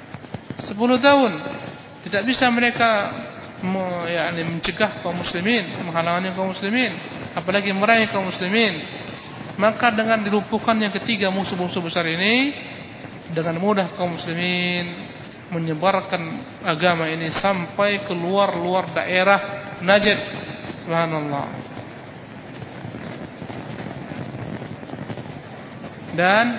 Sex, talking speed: male, 85 wpm